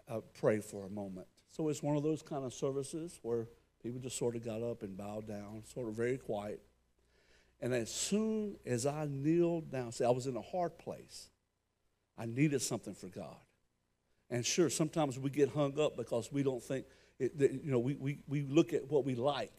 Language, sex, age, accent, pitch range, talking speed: English, male, 60-79, American, 115-155 Hz, 210 wpm